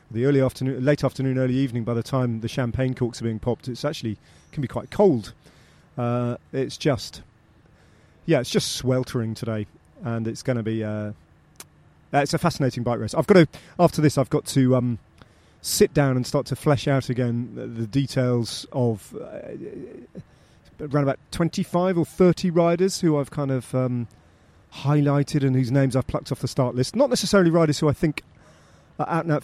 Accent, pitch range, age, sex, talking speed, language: British, 120-145 Hz, 30-49, male, 180 wpm, English